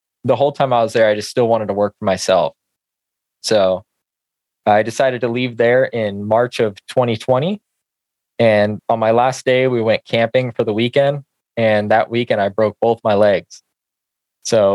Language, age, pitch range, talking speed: English, 20-39, 105-120 Hz, 180 wpm